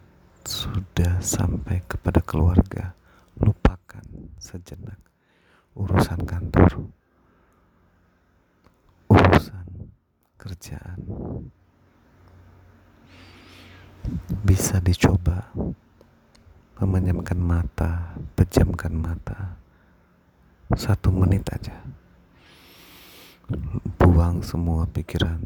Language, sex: Indonesian, male